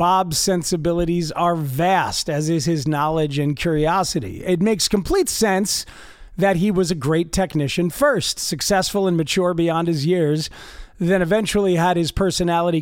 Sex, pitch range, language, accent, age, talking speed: male, 150-195 Hz, English, American, 40-59, 150 wpm